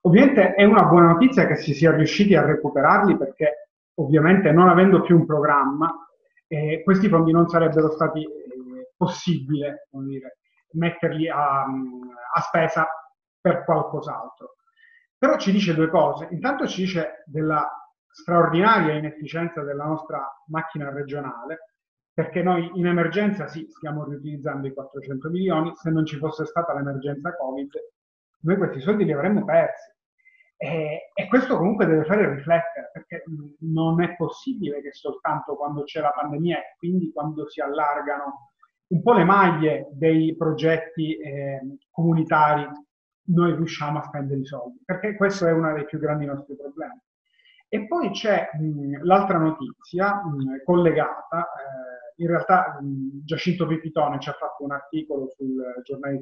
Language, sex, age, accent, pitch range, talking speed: Italian, male, 30-49, native, 145-180 Hz, 145 wpm